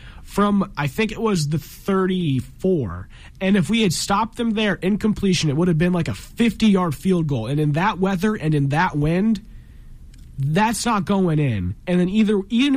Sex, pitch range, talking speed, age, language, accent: male, 145-195 Hz, 195 wpm, 30-49, English, American